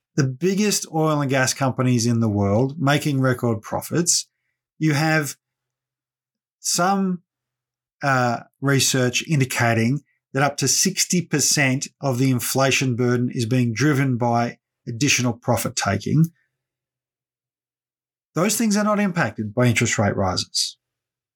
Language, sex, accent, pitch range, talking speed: English, male, Australian, 125-165 Hz, 115 wpm